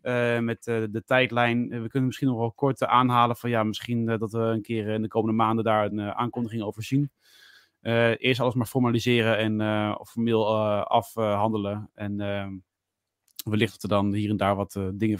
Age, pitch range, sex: 30-49, 110-145 Hz, male